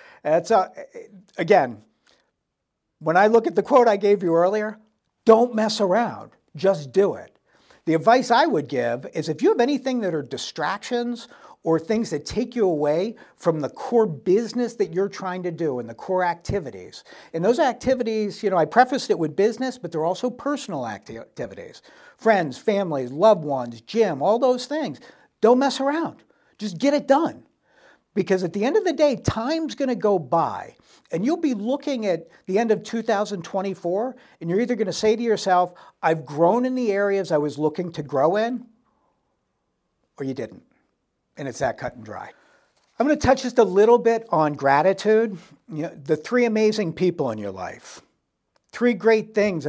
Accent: American